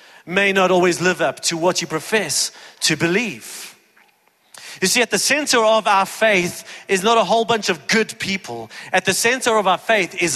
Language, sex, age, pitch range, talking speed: English, male, 30-49, 160-220 Hz, 195 wpm